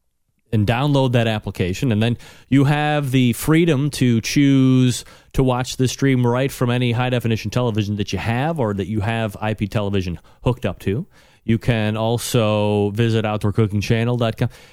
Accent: American